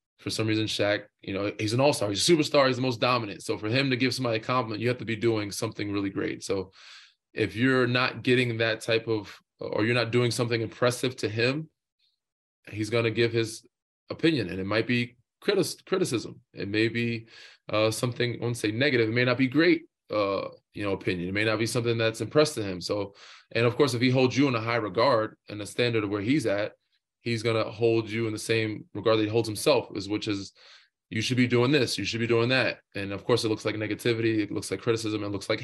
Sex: male